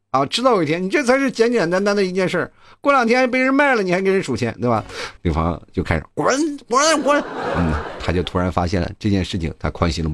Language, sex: Chinese, male